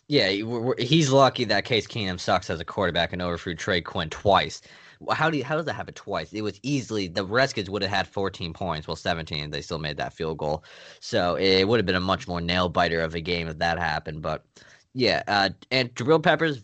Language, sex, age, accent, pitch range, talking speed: English, male, 20-39, American, 85-115 Hz, 220 wpm